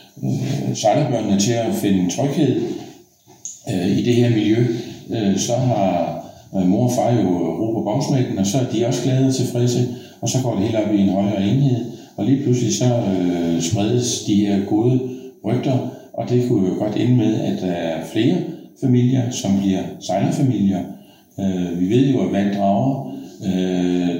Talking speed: 180 wpm